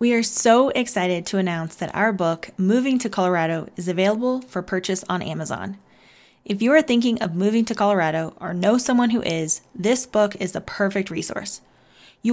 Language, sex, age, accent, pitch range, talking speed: English, female, 20-39, American, 180-225 Hz, 185 wpm